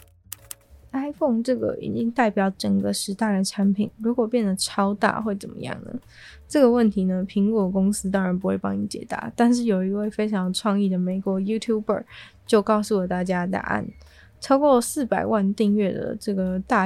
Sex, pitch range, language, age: female, 190-230 Hz, Chinese, 20-39